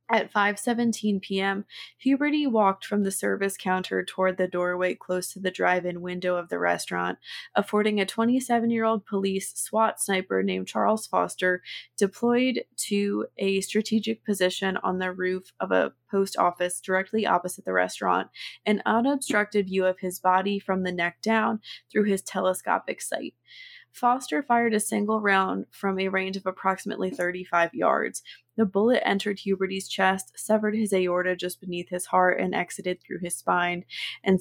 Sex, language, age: female, English, 20-39